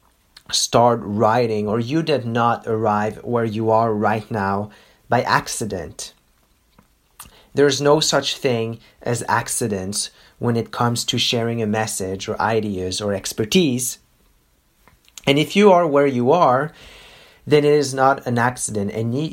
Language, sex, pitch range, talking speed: English, male, 110-140 Hz, 145 wpm